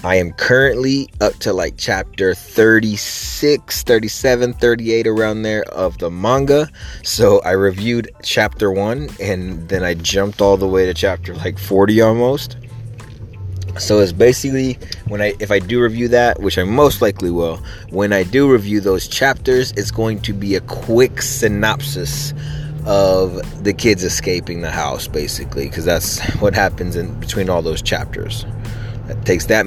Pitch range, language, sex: 90-115 Hz, English, male